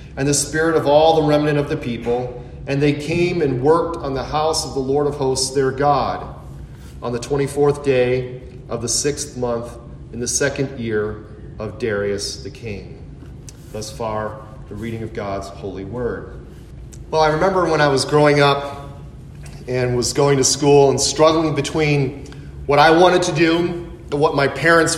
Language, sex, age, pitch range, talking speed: English, male, 40-59, 130-160 Hz, 180 wpm